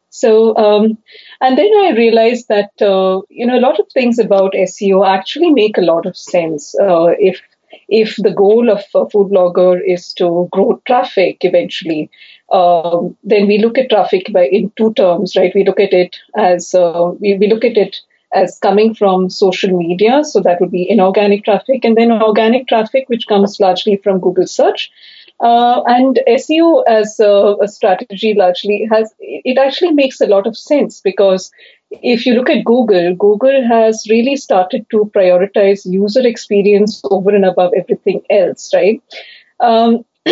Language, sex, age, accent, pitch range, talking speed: English, female, 30-49, Indian, 190-230 Hz, 175 wpm